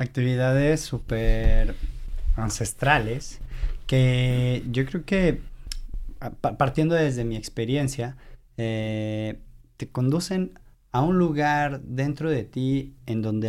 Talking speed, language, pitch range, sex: 100 wpm, Spanish, 115-140 Hz, male